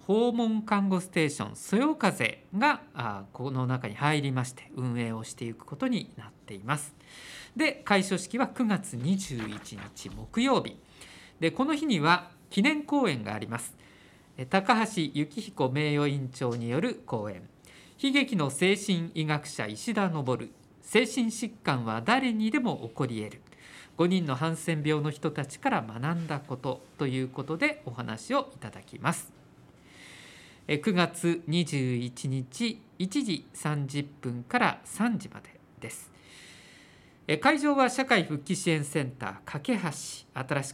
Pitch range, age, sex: 130-205 Hz, 50-69, male